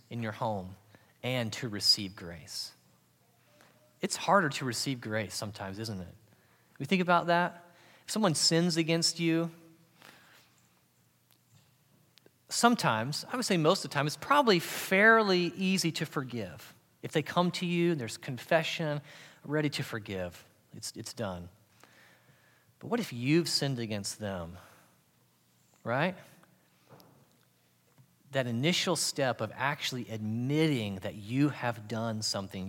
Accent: American